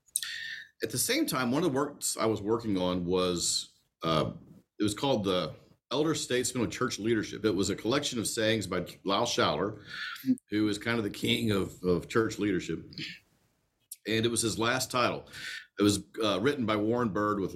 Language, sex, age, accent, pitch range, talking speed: English, male, 50-69, American, 95-125 Hz, 190 wpm